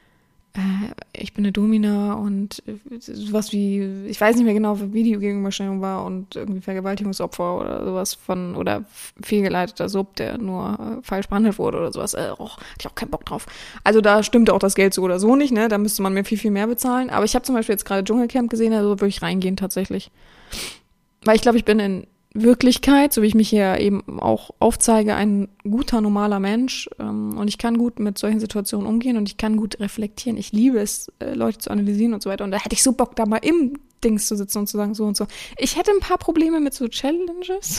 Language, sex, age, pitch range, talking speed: German, female, 20-39, 205-245 Hz, 225 wpm